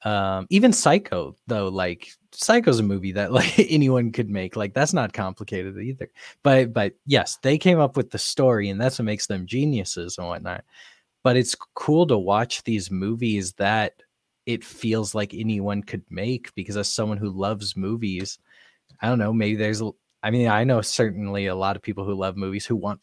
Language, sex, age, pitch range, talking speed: English, male, 20-39, 95-120 Hz, 195 wpm